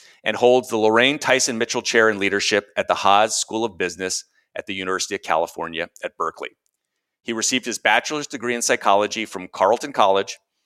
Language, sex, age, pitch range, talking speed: English, male, 40-59, 105-140 Hz, 180 wpm